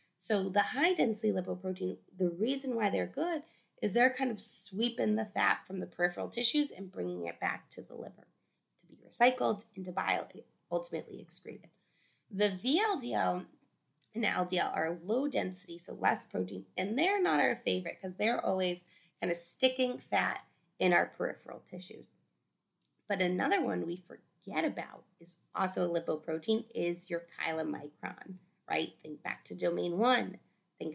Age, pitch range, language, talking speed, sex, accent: 20-39, 170-230 Hz, English, 155 wpm, female, American